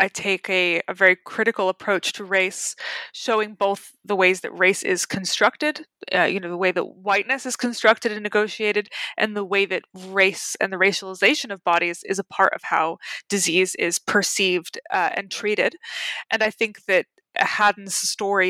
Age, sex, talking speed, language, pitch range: 20-39, female, 180 wpm, English, 190-225 Hz